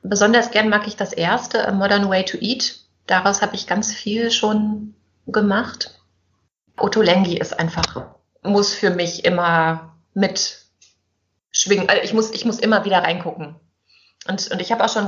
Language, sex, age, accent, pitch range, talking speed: German, female, 20-39, German, 190-230 Hz, 165 wpm